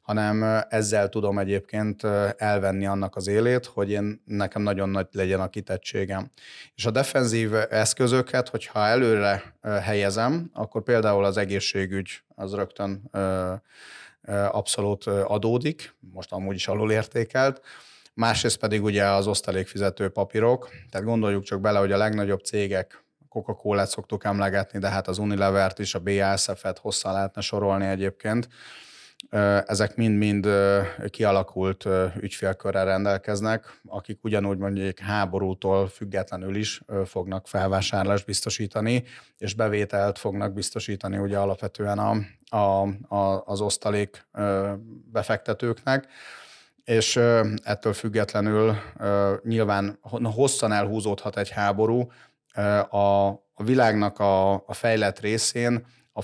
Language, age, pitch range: Hungarian, 30-49, 100-110 Hz